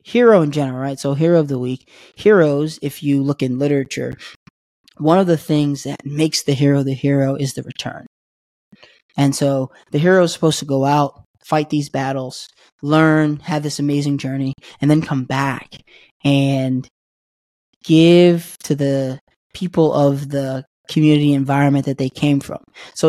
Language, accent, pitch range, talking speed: English, American, 135-150 Hz, 165 wpm